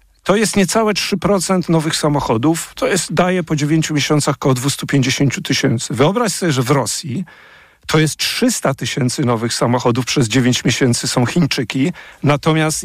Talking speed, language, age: 150 wpm, Polish, 50-69